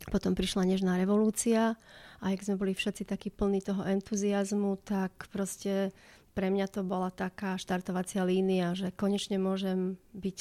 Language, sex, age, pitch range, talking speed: Slovak, female, 30-49, 185-200 Hz, 150 wpm